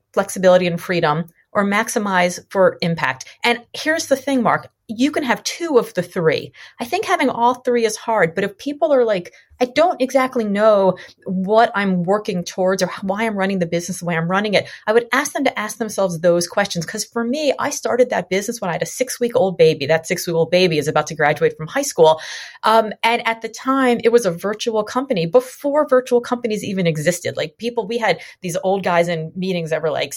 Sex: female